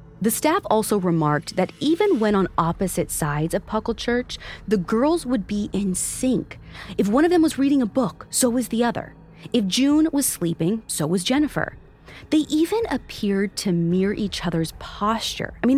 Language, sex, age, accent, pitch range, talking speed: English, female, 30-49, American, 165-250 Hz, 185 wpm